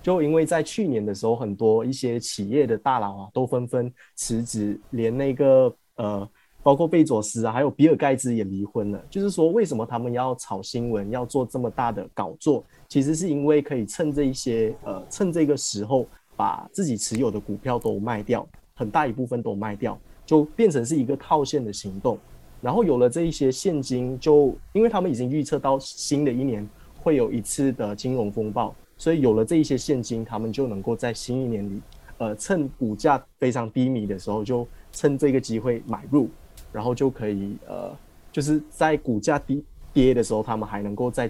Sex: male